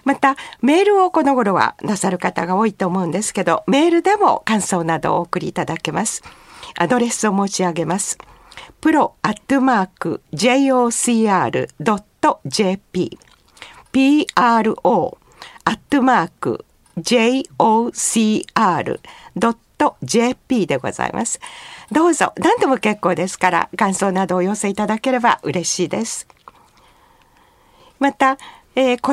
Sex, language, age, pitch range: female, Japanese, 50-69, 185-275 Hz